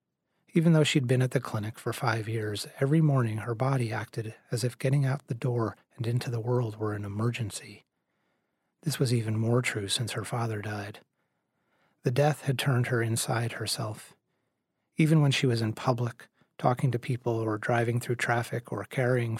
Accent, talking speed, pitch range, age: American, 185 wpm, 110-135 Hz, 30-49